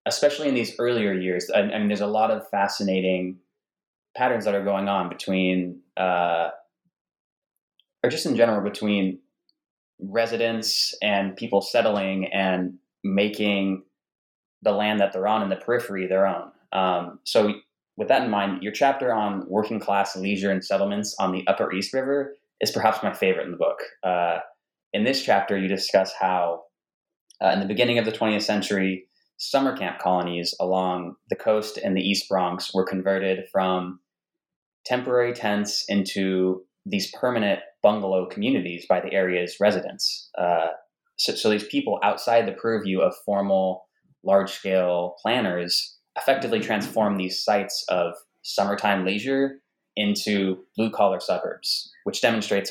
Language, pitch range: English, 95-110 Hz